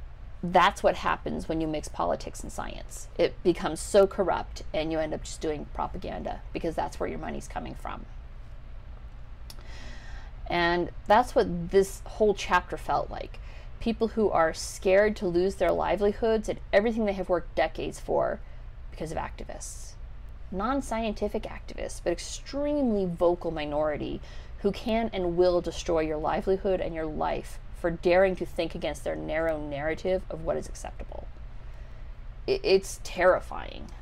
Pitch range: 165-215 Hz